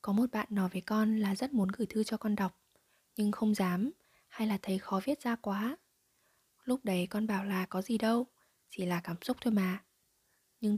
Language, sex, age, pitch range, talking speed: Vietnamese, female, 20-39, 195-235 Hz, 215 wpm